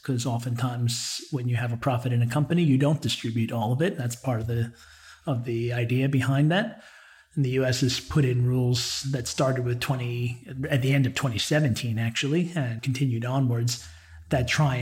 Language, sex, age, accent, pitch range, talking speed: English, male, 40-59, American, 120-135 Hz, 190 wpm